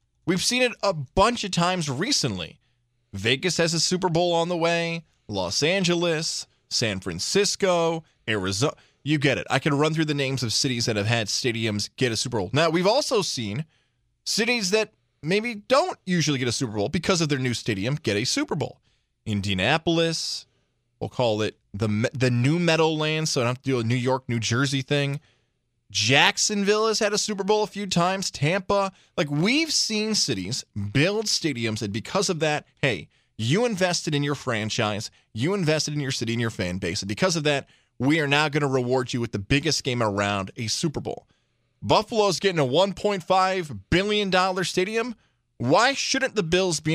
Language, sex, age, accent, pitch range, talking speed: English, male, 20-39, American, 120-190 Hz, 190 wpm